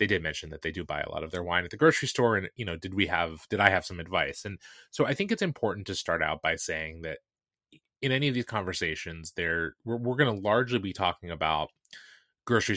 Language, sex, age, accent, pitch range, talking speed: English, male, 20-39, American, 90-120 Hz, 255 wpm